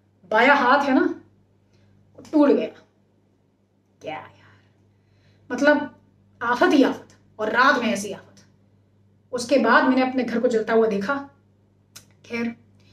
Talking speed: 120 wpm